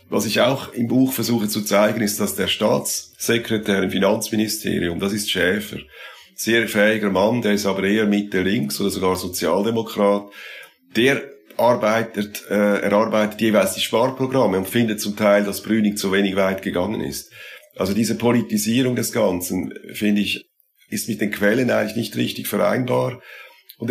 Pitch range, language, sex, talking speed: 100-110 Hz, German, male, 160 wpm